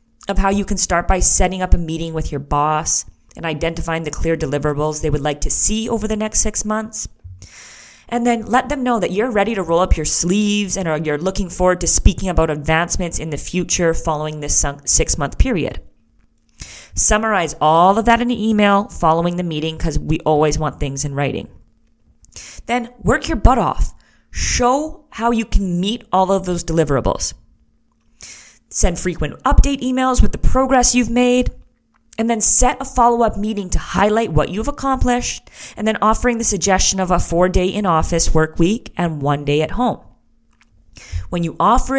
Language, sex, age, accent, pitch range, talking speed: English, female, 30-49, American, 150-215 Hz, 180 wpm